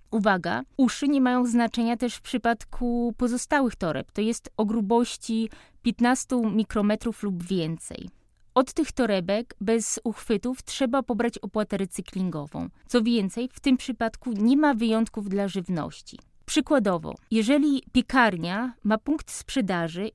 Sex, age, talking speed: female, 20-39, 130 wpm